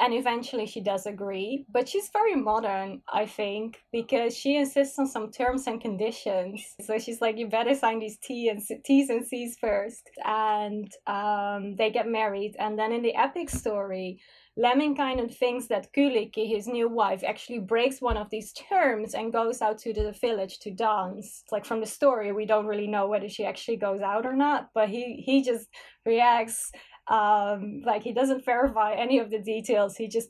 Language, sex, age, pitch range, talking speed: English, female, 20-39, 210-245 Hz, 195 wpm